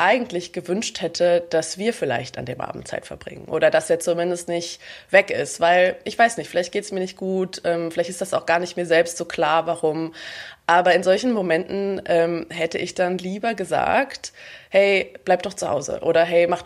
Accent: German